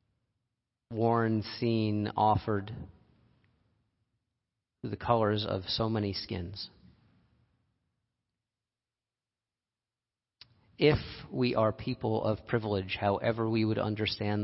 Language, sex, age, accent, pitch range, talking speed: English, male, 40-59, American, 100-115 Hz, 85 wpm